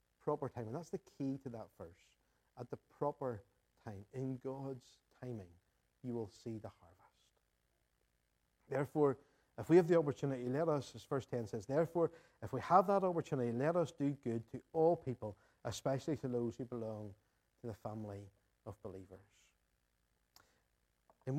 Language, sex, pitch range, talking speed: English, male, 105-140 Hz, 160 wpm